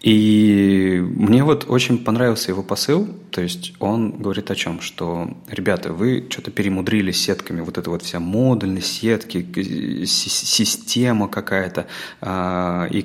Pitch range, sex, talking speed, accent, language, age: 95-120 Hz, male, 130 wpm, native, Russian, 30-49